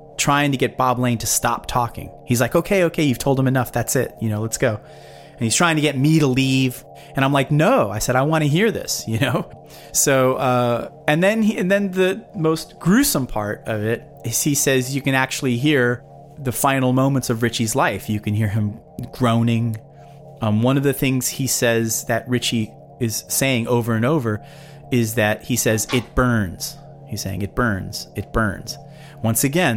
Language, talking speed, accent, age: English, 205 wpm, American, 30-49